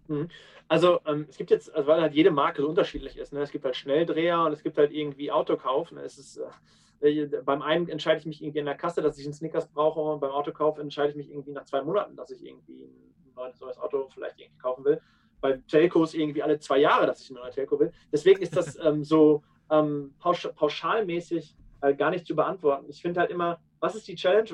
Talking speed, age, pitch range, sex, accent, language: 230 wpm, 30-49, 150-170 Hz, male, German, English